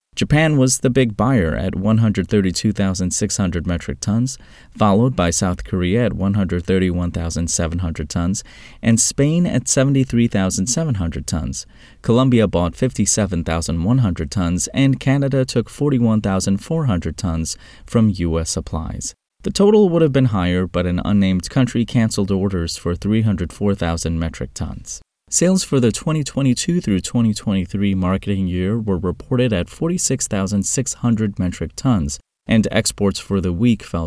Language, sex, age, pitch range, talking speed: English, male, 30-49, 90-120 Hz, 120 wpm